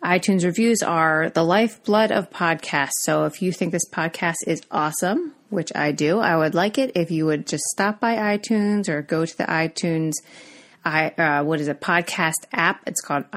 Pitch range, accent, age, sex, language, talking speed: 160-225 Hz, American, 30-49, female, English, 195 wpm